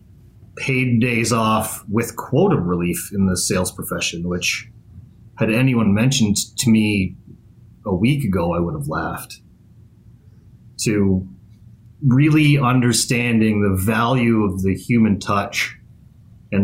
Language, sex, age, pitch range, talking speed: English, male, 30-49, 100-115 Hz, 125 wpm